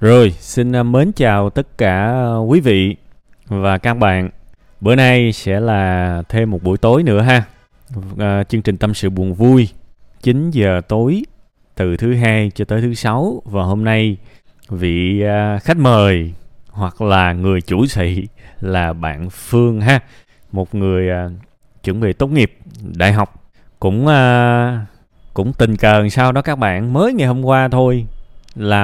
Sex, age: male, 20-39